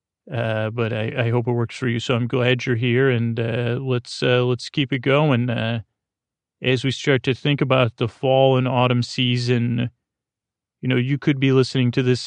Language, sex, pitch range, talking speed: English, male, 120-135 Hz, 205 wpm